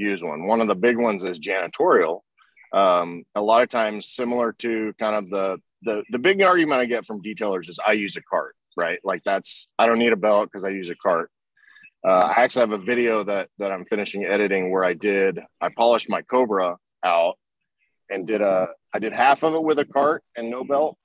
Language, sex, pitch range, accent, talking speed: English, male, 105-125 Hz, American, 220 wpm